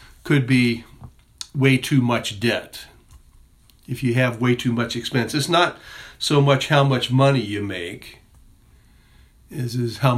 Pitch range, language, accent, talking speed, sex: 110-130 Hz, English, American, 145 wpm, male